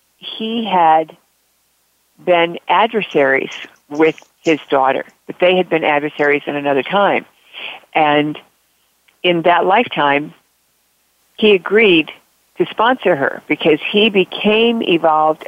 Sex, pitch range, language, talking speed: female, 155-205 Hz, English, 110 wpm